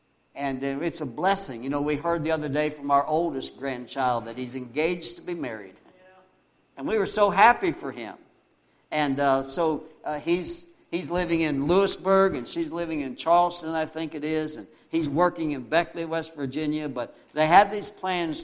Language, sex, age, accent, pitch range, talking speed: English, male, 60-79, American, 135-170 Hz, 190 wpm